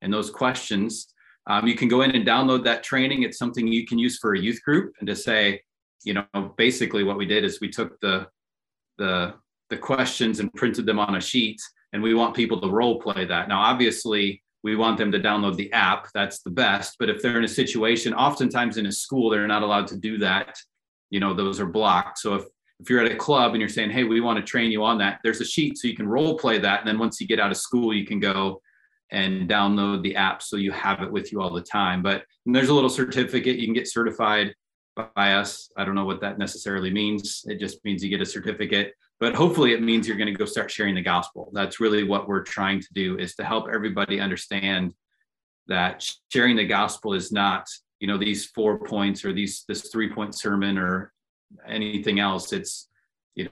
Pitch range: 100-115 Hz